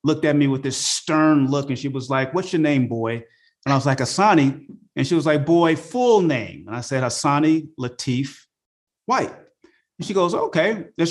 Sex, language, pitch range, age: male, English, 115-150 Hz, 30-49